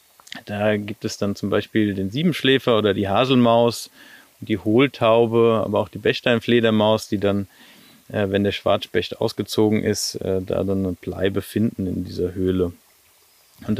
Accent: German